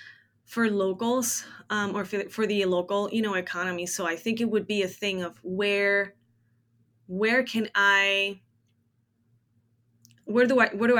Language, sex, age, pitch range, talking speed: English, female, 20-39, 175-215 Hz, 165 wpm